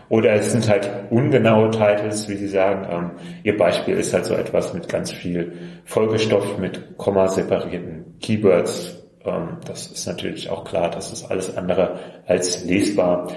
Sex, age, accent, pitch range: male, 30-49, German, 90-110 Hz